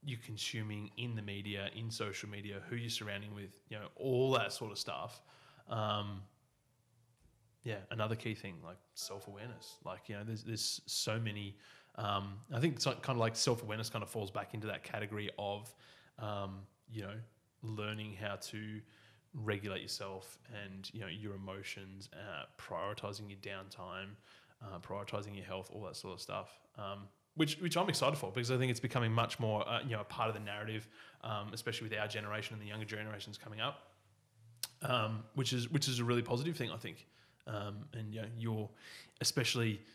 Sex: male